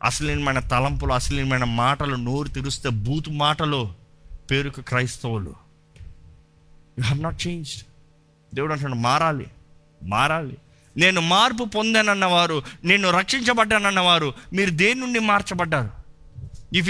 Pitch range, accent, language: 140-205 Hz, native, Telugu